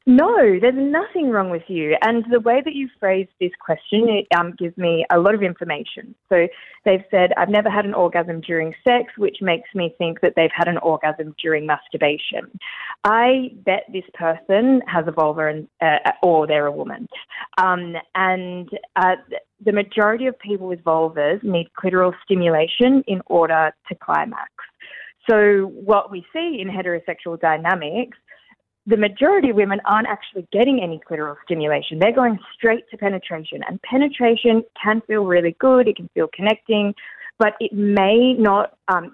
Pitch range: 170-215 Hz